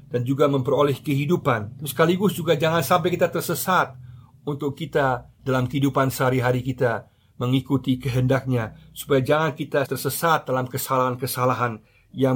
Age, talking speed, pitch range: 50-69, 120 wpm, 125-145 Hz